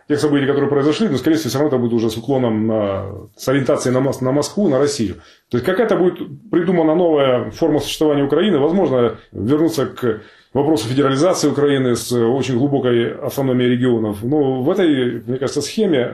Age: 30-49